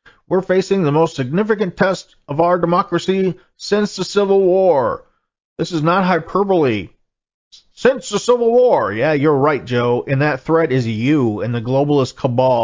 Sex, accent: male, American